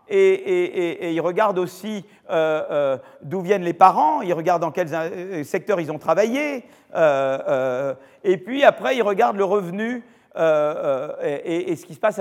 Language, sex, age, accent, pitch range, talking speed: French, male, 50-69, French, 170-225 Hz, 185 wpm